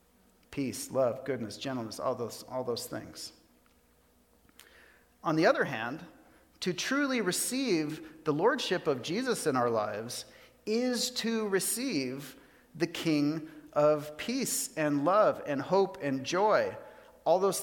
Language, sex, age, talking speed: English, male, 40-59, 130 wpm